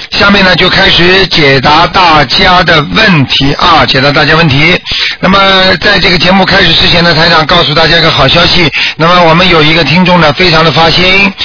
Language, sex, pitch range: Chinese, male, 150-180 Hz